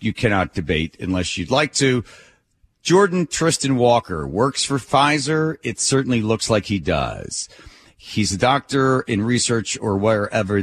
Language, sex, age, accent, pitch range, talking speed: English, male, 40-59, American, 95-120 Hz, 145 wpm